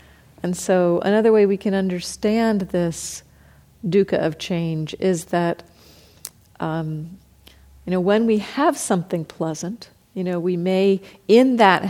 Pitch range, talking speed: 170-220 Hz, 135 wpm